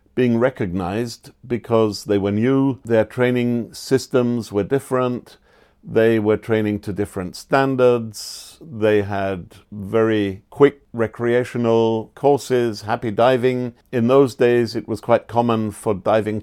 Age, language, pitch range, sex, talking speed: 50-69, English, 105-125 Hz, male, 125 wpm